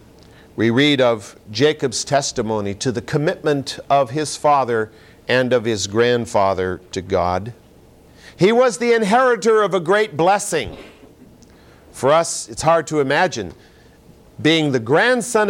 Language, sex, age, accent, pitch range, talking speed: English, male, 50-69, American, 115-155 Hz, 130 wpm